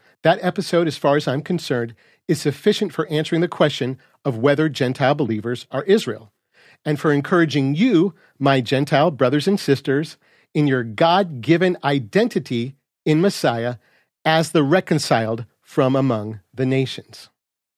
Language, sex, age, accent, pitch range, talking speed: English, male, 50-69, American, 130-170 Hz, 140 wpm